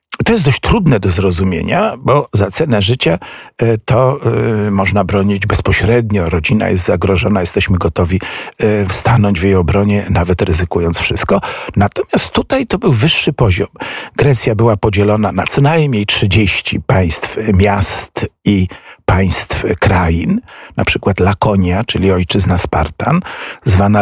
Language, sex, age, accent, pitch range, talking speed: Polish, male, 50-69, native, 95-120 Hz, 125 wpm